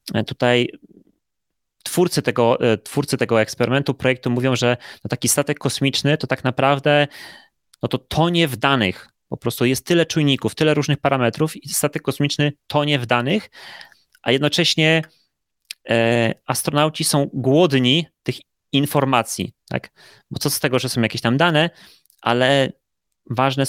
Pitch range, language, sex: 120-150 Hz, Polish, male